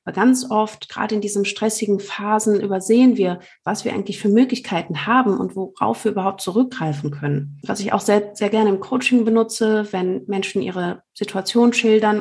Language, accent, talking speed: German, German, 175 wpm